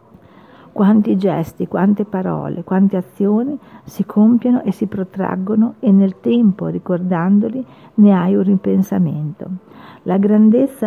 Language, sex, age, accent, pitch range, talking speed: Italian, female, 50-69, native, 185-225 Hz, 115 wpm